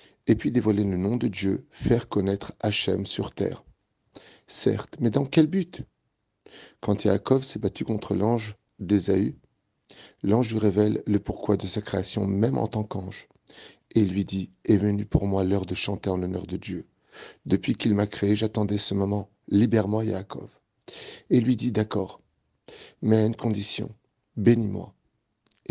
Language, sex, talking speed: French, male, 170 wpm